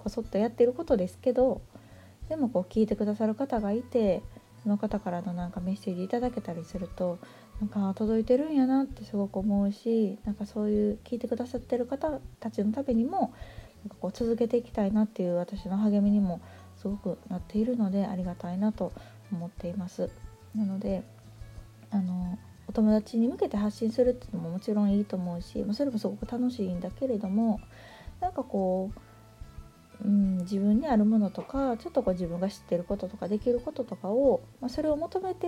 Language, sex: Japanese, female